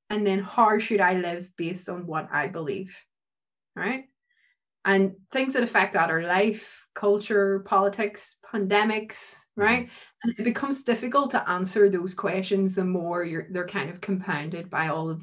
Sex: female